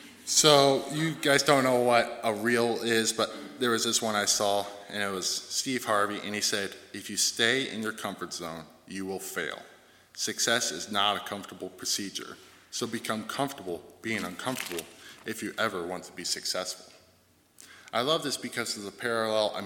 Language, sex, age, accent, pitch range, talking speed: English, male, 20-39, American, 95-115 Hz, 185 wpm